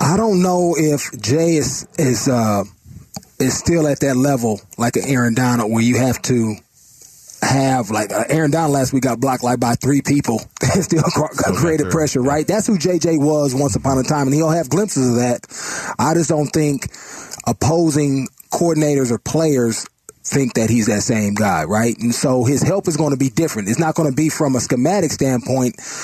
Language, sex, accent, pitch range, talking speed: English, male, American, 125-155 Hz, 200 wpm